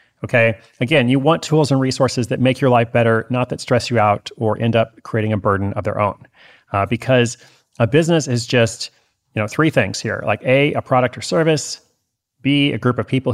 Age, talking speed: 30-49, 215 wpm